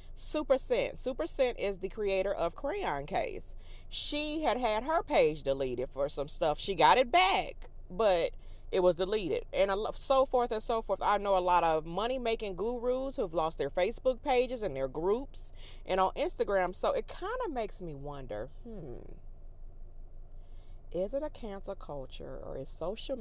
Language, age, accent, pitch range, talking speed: English, 30-49, American, 155-240 Hz, 170 wpm